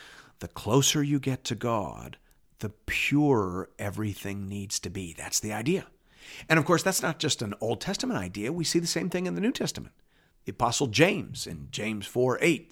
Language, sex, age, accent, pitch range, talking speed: English, male, 50-69, American, 120-180 Hz, 195 wpm